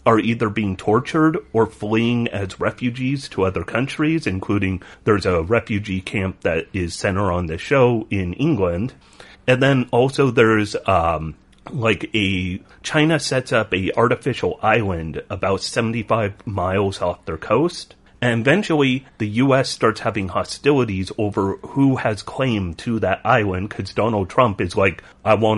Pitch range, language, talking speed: 100-135 Hz, English, 150 wpm